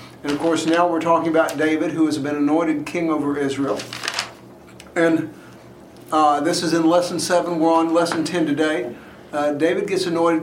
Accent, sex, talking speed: American, male, 180 wpm